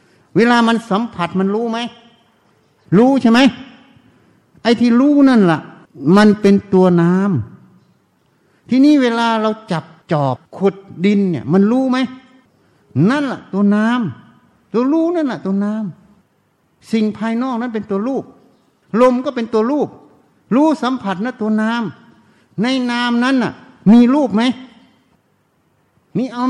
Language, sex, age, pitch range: Thai, male, 60-79, 180-240 Hz